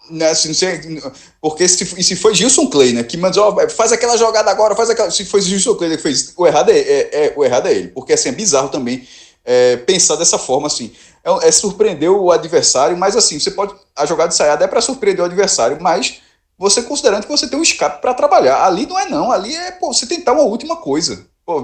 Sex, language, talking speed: male, Portuguese, 235 wpm